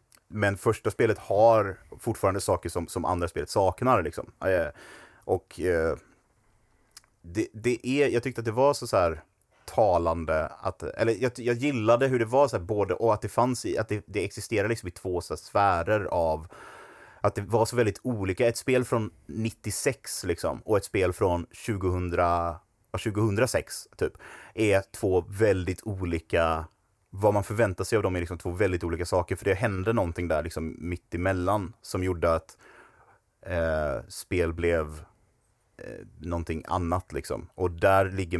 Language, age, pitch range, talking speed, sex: Swedish, 30-49, 85-115 Hz, 170 wpm, male